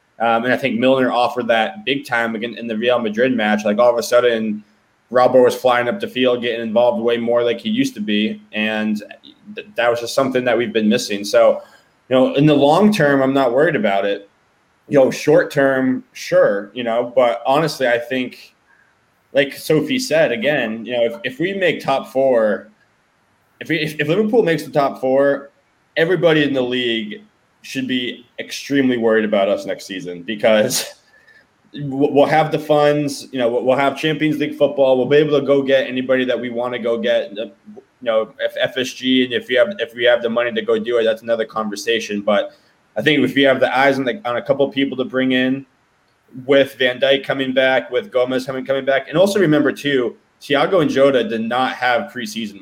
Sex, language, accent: male, English, American